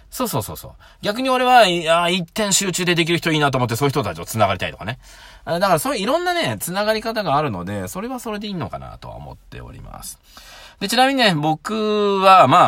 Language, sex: Japanese, male